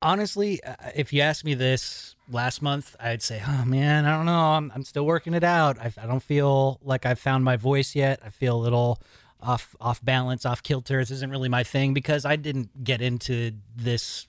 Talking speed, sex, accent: 215 wpm, male, American